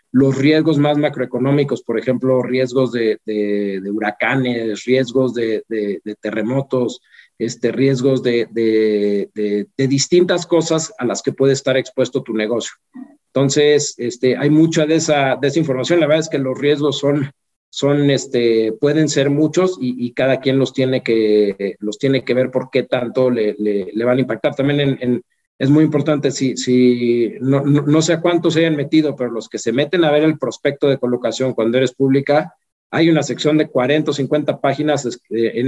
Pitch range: 120-150 Hz